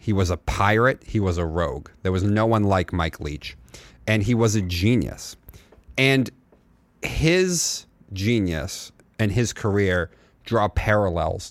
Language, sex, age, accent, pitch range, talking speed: English, male, 30-49, American, 90-110 Hz, 145 wpm